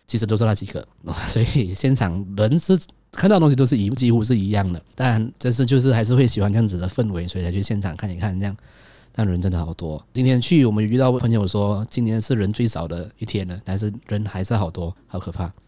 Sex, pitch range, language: male, 95-125 Hz, Chinese